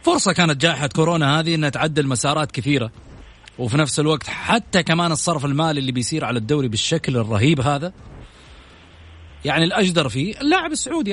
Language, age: Arabic, 30-49